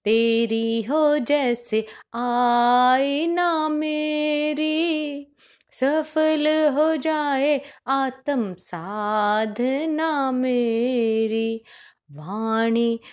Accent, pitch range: native, 235-310 Hz